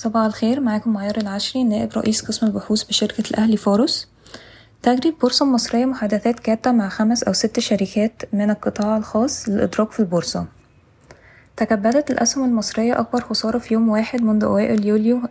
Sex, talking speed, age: female, 155 wpm, 20-39